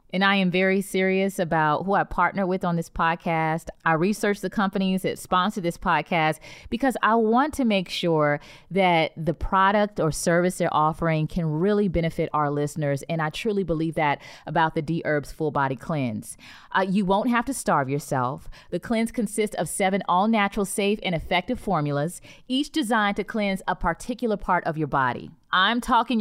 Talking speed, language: 180 wpm, English